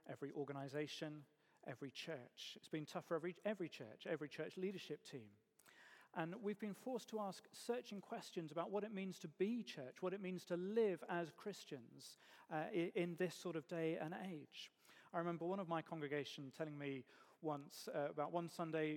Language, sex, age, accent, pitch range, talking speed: English, male, 40-59, British, 160-200 Hz, 185 wpm